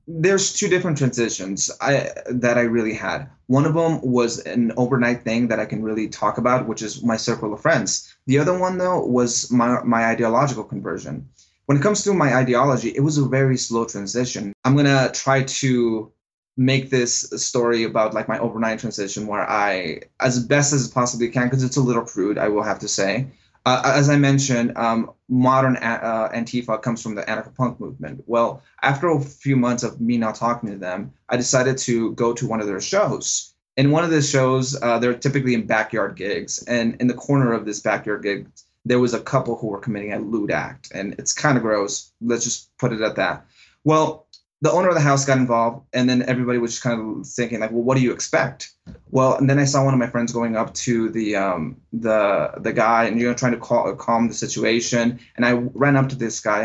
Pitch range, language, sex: 115-130 Hz, English, male